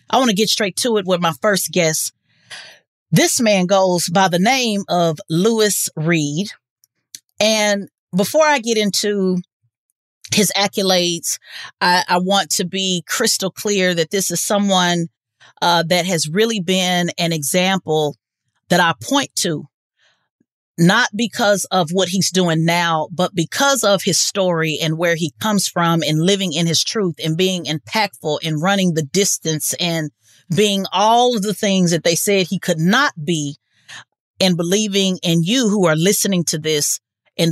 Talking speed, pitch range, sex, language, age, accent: 160 wpm, 165-210 Hz, female, English, 30-49, American